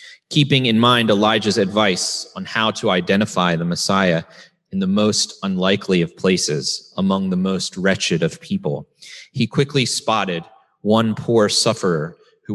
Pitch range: 100-135 Hz